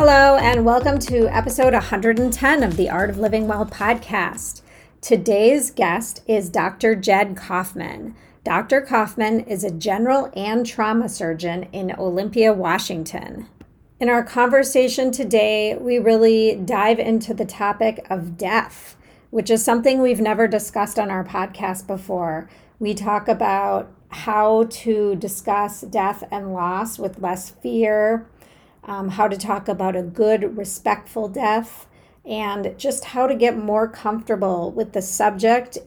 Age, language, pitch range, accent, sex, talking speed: 30-49, English, 195-235 Hz, American, female, 140 wpm